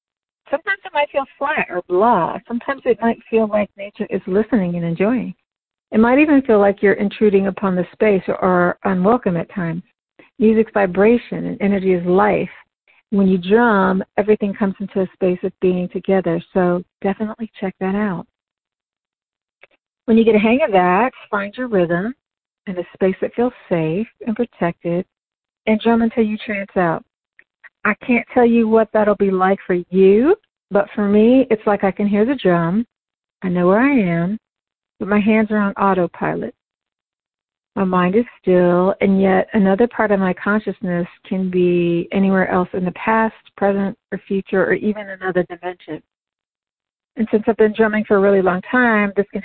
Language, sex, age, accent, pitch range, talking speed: English, female, 50-69, American, 185-220 Hz, 175 wpm